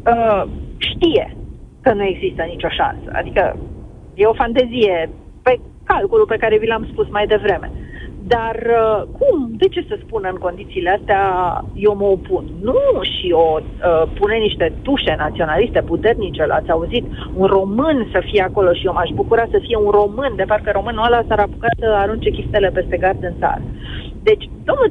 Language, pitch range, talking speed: Romanian, 195-290 Hz, 175 wpm